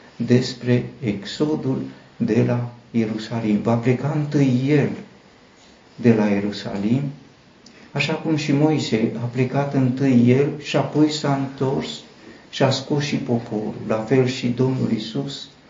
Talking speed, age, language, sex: 130 wpm, 60-79, Romanian, male